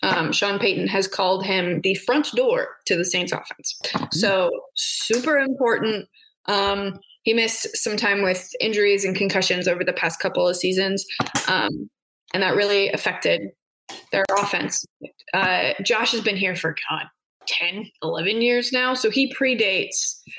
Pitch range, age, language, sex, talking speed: 195-255 Hz, 20-39, English, female, 155 wpm